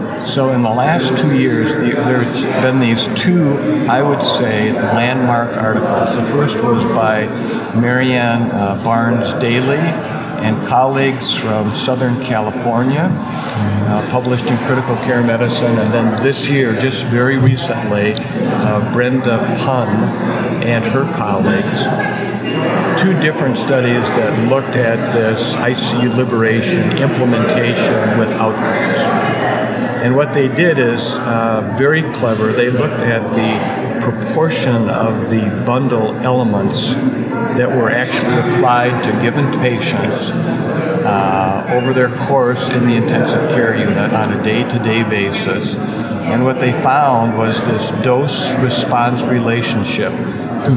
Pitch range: 115-130 Hz